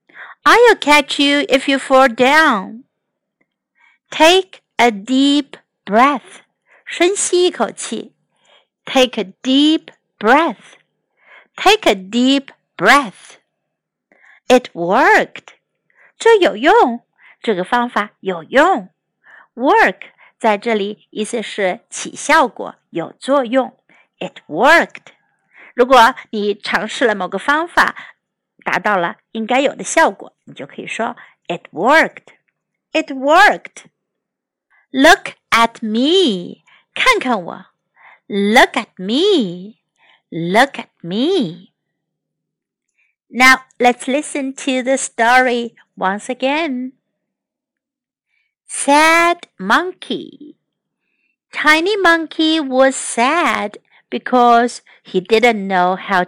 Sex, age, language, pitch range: female, 50-69, Chinese, 220-300 Hz